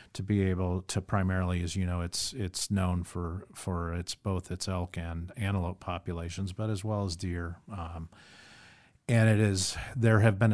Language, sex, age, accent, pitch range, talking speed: English, male, 40-59, American, 90-110 Hz, 180 wpm